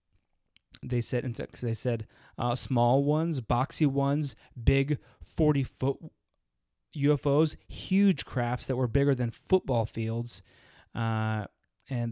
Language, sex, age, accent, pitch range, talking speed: English, male, 20-39, American, 115-140 Hz, 115 wpm